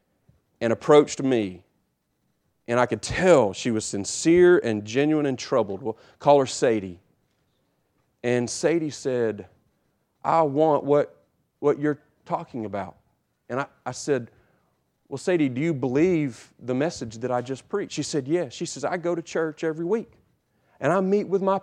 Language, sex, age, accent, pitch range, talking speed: English, male, 40-59, American, 125-175 Hz, 165 wpm